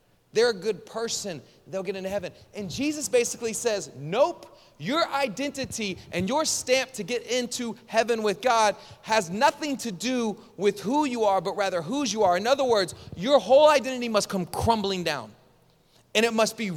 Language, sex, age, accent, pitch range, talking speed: English, male, 30-49, American, 180-240 Hz, 185 wpm